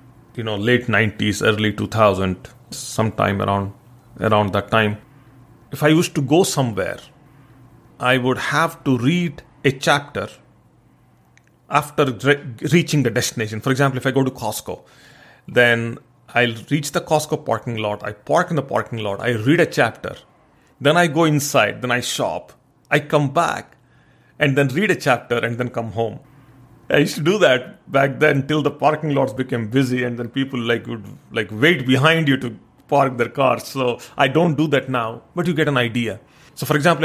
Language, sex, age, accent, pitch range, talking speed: English, male, 40-59, Indian, 120-145 Hz, 180 wpm